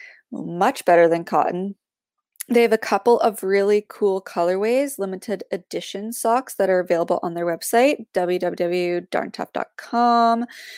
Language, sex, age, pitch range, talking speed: English, female, 20-39, 190-235 Hz, 120 wpm